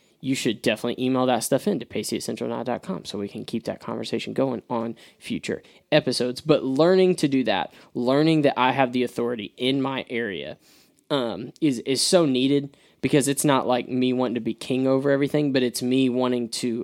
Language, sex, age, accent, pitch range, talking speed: English, male, 10-29, American, 115-135 Hz, 200 wpm